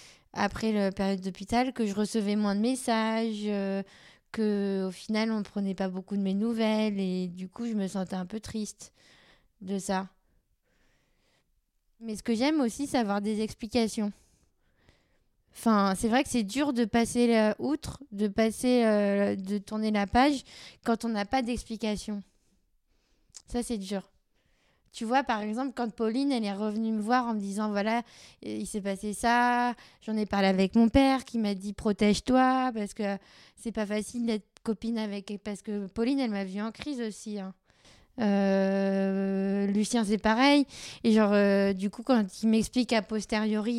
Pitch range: 200-230 Hz